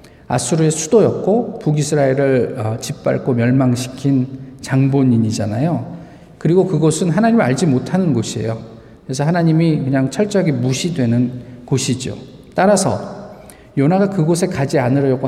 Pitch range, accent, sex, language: 130-180 Hz, native, male, Korean